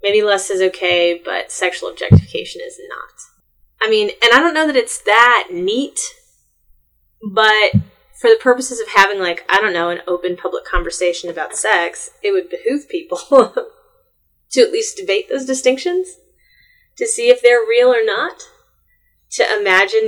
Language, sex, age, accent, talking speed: English, female, 30-49, American, 160 wpm